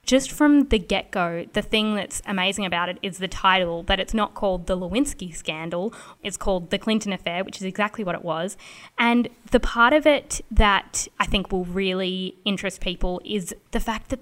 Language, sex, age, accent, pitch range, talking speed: English, female, 10-29, Australian, 185-225 Hz, 200 wpm